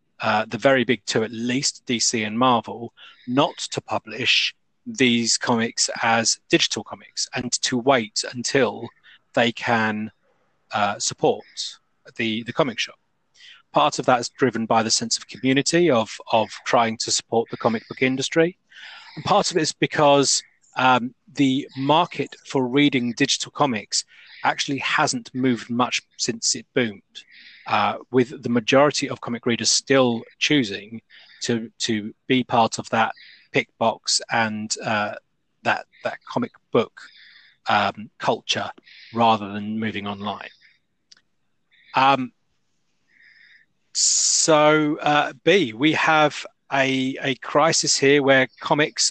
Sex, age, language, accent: male, 30-49, English, British